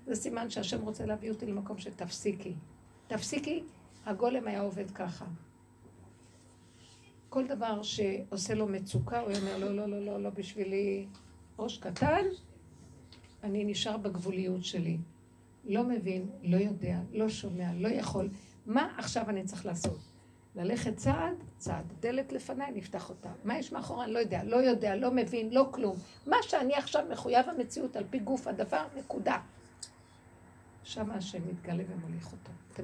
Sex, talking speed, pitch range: female, 145 wpm, 190-255 Hz